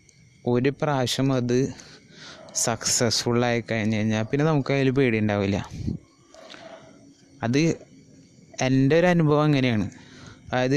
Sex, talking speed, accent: male, 90 wpm, native